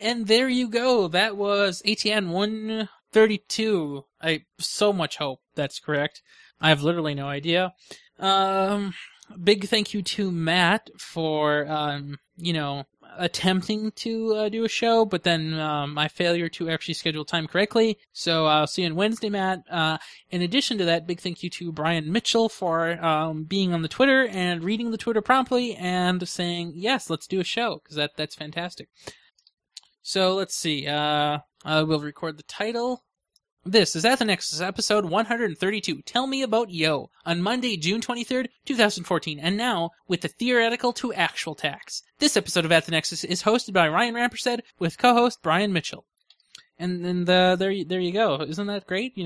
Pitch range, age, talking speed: 160-210 Hz, 20-39, 175 wpm